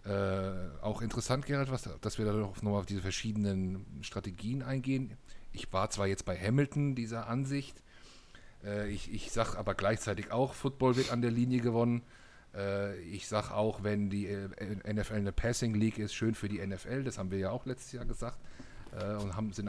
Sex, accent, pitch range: male, German, 95-120 Hz